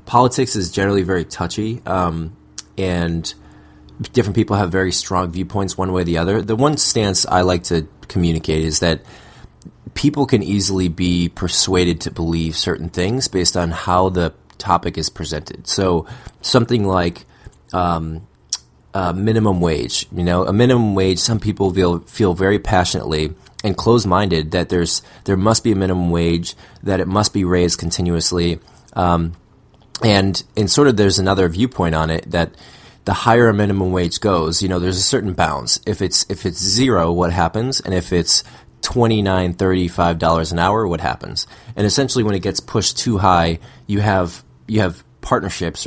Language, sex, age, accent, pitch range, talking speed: English, male, 20-39, American, 85-105 Hz, 175 wpm